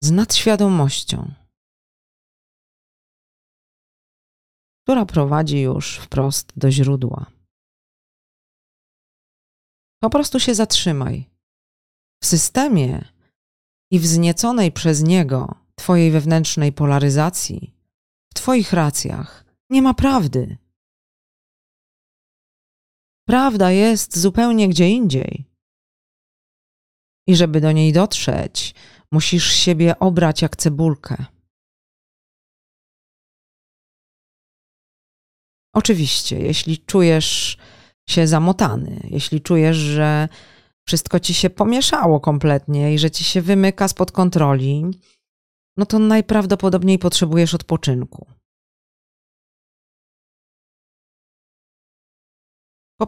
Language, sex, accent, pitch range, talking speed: Polish, female, native, 135-190 Hz, 75 wpm